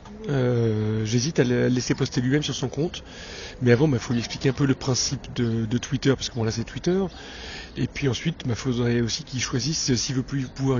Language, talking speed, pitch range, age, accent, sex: French, 240 wpm, 120-145 Hz, 30-49, French, male